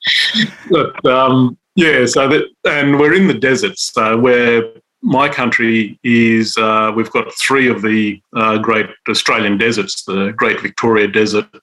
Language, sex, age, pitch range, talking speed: English, male, 40-59, 110-135 Hz, 140 wpm